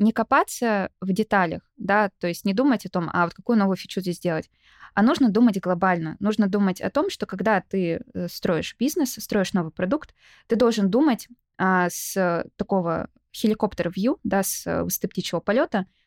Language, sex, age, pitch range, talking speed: Russian, female, 20-39, 185-225 Hz, 170 wpm